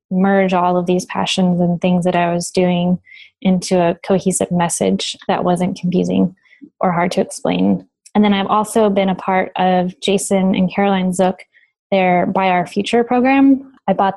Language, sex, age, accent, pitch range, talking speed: English, female, 10-29, American, 180-200 Hz, 175 wpm